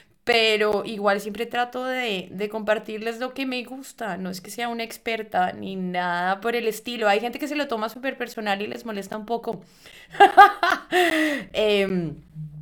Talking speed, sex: 170 wpm, female